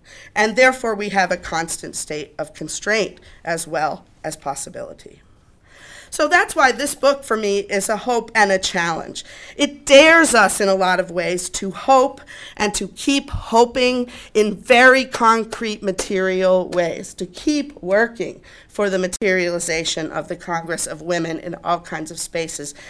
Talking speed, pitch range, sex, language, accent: 160 wpm, 180-240 Hz, female, English, American